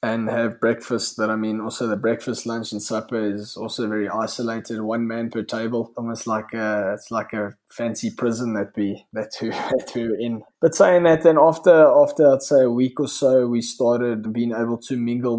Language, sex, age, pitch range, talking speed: English, male, 20-39, 110-125 Hz, 210 wpm